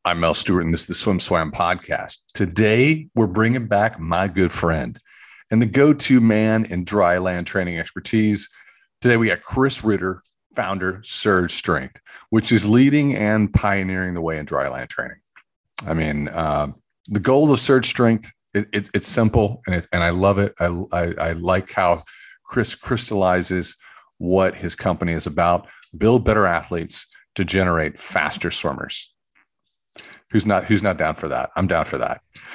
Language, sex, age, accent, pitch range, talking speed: English, male, 40-59, American, 85-110 Hz, 165 wpm